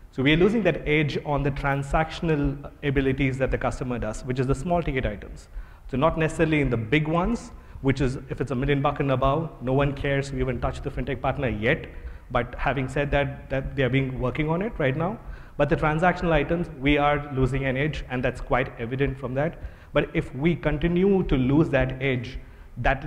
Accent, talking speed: Indian, 215 wpm